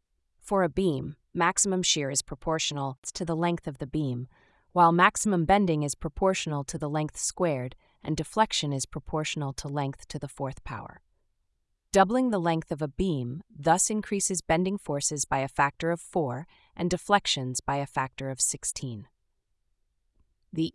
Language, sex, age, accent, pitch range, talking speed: English, female, 30-49, American, 140-180 Hz, 160 wpm